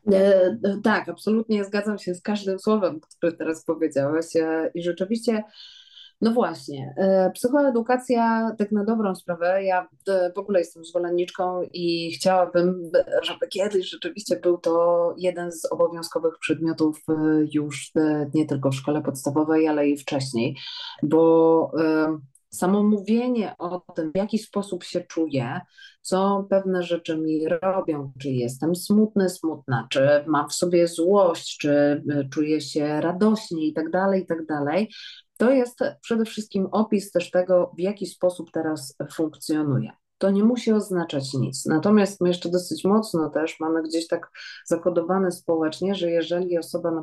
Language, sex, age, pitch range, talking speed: Polish, female, 30-49, 155-200 Hz, 135 wpm